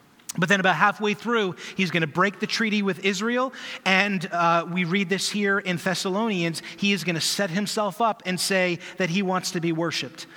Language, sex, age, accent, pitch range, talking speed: English, male, 30-49, American, 165-195 Hz, 195 wpm